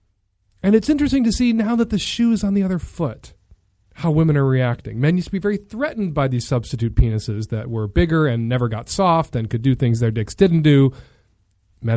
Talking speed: 220 wpm